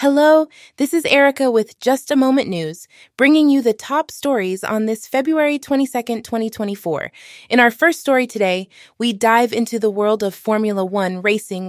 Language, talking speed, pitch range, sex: English, 170 wpm, 210-275 Hz, female